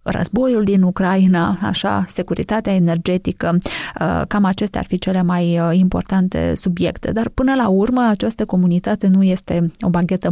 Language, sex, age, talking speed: Romanian, female, 20-39, 140 wpm